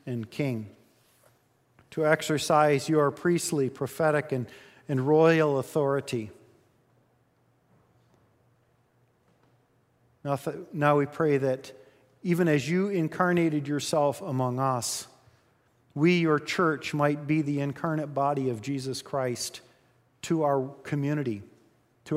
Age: 40-59